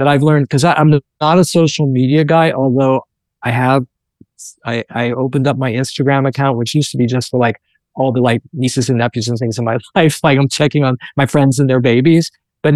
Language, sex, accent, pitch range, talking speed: English, male, American, 130-155 Hz, 225 wpm